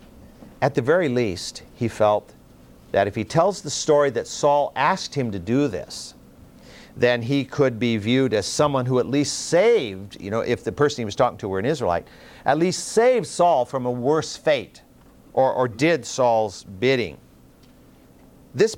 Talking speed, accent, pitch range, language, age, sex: 180 wpm, American, 100-140 Hz, English, 50-69, male